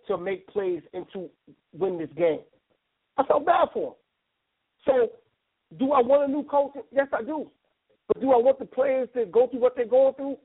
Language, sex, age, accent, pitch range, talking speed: English, male, 40-59, American, 225-290 Hz, 205 wpm